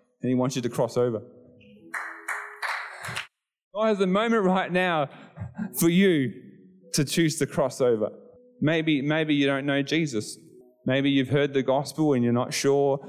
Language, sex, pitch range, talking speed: English, male, 105-140 Hz, 160 wpm